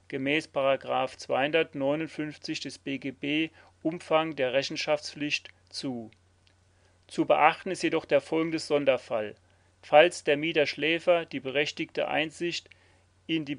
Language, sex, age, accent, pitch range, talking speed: German, male, 40-59, German, 105-165 Hz, 100 wpm